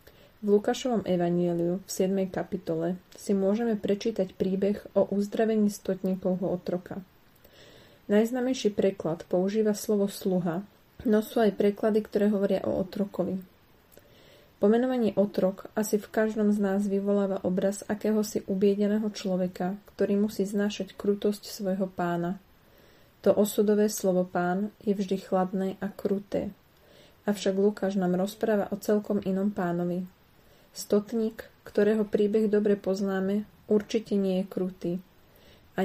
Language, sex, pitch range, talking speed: Slovak, female, 185-210 Hz, 120 wpm